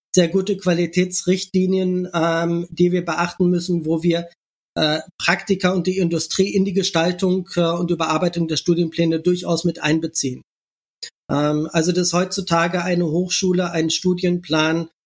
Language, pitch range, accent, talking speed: German, 165-190 Hz, German, 135 wpm